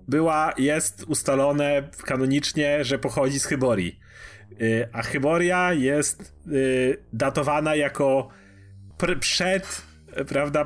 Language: Polish